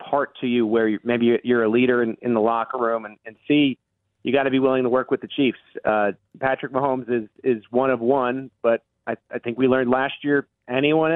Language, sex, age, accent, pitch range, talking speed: English, male, 40-59, American, 110-130 Hz, 235 wpm